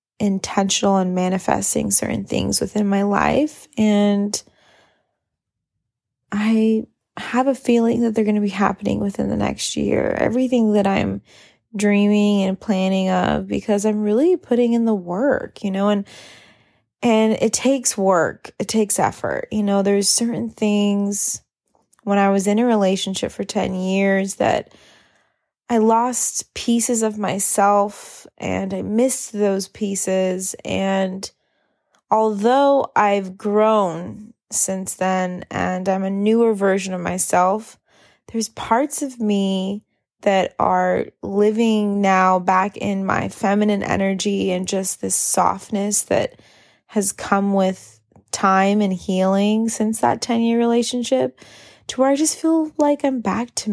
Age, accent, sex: 20-39, American, female